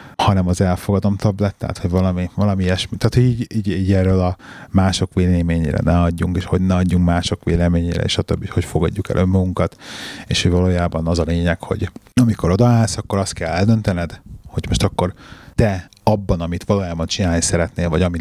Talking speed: 180 wpm